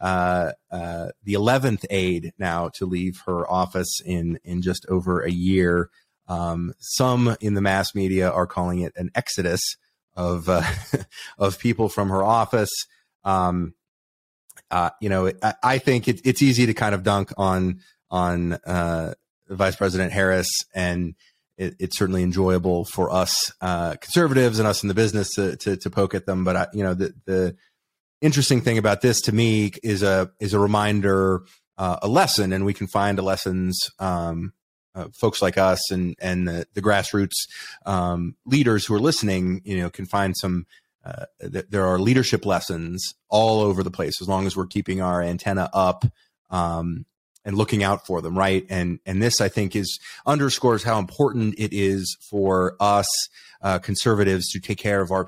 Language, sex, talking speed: English, male, 180 wpm